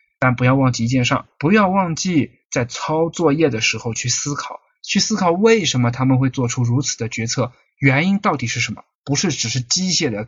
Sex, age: male, 20-39